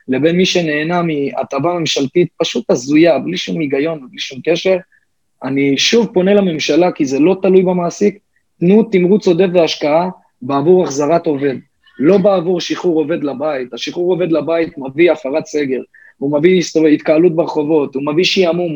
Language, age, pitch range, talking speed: Hebrew, 30-49, 145-190 Hz, 155 wpm